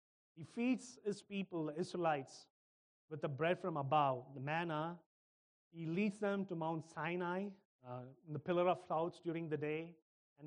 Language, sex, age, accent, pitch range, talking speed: English, male, 30-49, Indian, 135-175 Hz, 160 wpm